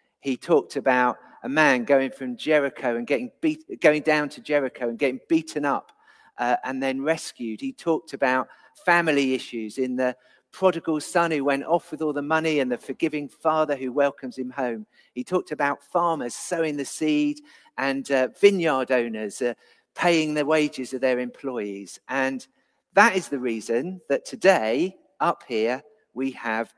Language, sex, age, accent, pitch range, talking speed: English, male, 50-69, British, 125-160 Hz, 170 wpm